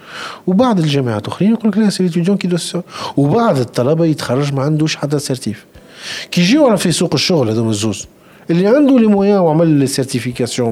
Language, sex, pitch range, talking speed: Arabic, male, 120-175 Hz, 170 wpm